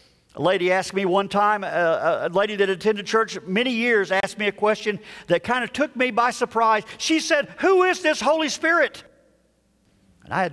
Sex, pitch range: male, 165-225 Hz